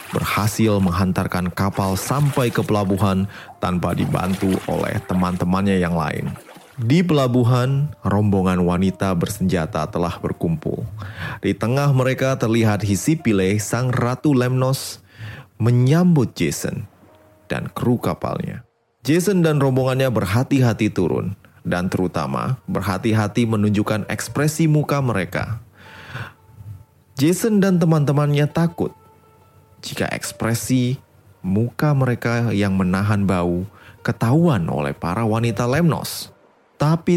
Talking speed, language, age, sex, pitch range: 100 wpm, Indonesian, 30-49, male, 100-145 Hz